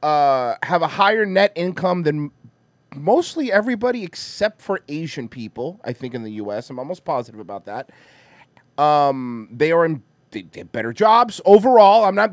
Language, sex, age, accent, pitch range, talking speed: English, male, 30-49, American, 155-225 Hz, 170 wpm